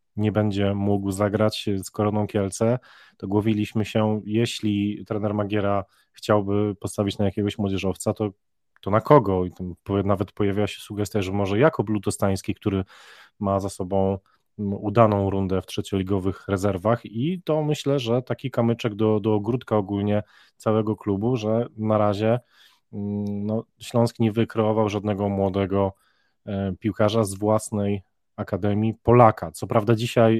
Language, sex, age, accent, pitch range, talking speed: Polish, male, 20-39, native, 100-115 Hz, 140 wpm